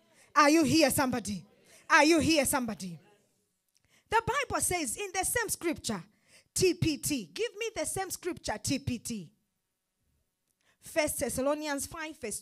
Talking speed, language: 125 wpm, English